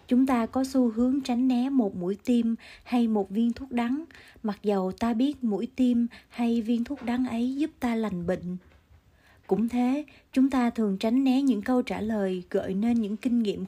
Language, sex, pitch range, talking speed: Vietnamese, female, 195-245 Hz, 200 wpm